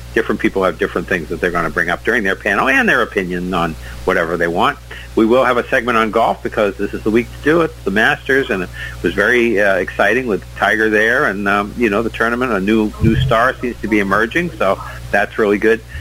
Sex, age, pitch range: male, 50-69, 90-115 Hz